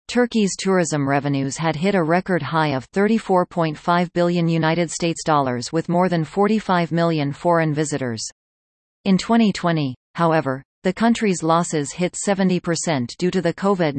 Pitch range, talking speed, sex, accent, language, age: 145-185 Hz, 130 wpm, female, American, English, 40-59